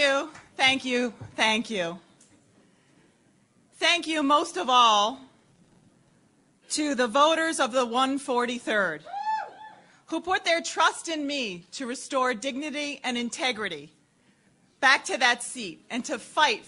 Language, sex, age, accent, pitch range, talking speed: English, female, 40-59, American, 215-295 Hz, 125 wpm